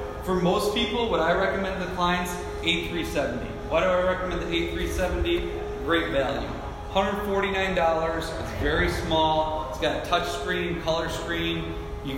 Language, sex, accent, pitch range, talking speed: English, male, American, 135-175 Hz, 145 wpm